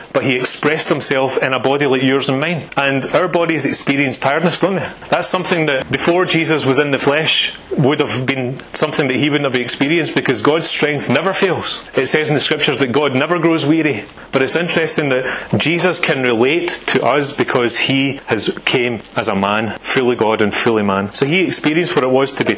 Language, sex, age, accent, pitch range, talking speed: English, male, 30-49, British, 130-160 Hz, 215 wpm